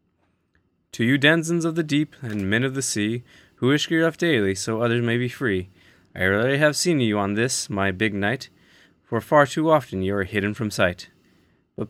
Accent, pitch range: American, 95-140 Hz